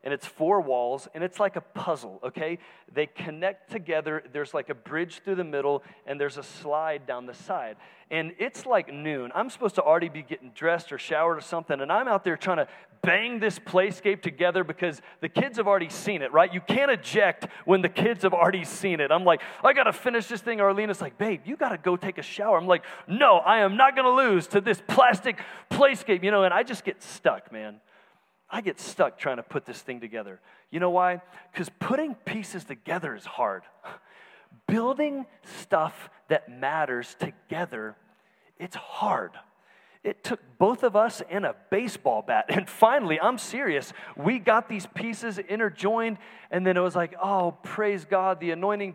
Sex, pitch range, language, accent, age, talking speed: male, 165-210 Hz, English, American, 40-59, 195 wpm